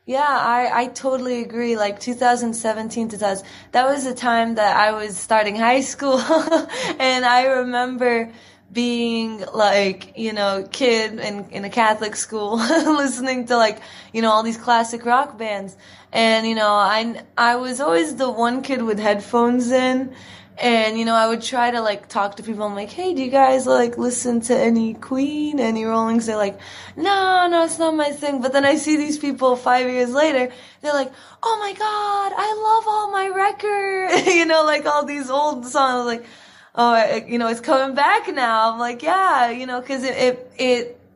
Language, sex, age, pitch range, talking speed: English, female, 20-39, 215-265 Hz, 190 wpm